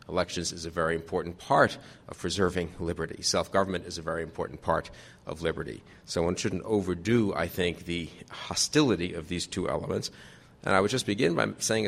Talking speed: 180 wpm